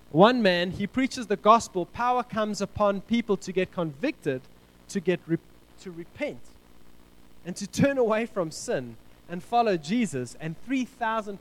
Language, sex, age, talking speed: English, male, 20-39, 155 wpm